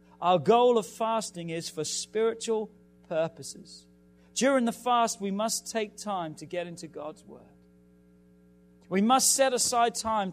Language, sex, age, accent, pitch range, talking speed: English, male, 40-59, British, 175-255 Hz, 145 wpm